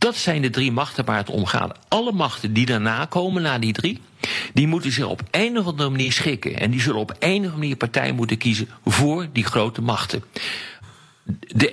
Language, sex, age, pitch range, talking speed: Dutch, male, 50-69, 110-150 Hz, 215 wpm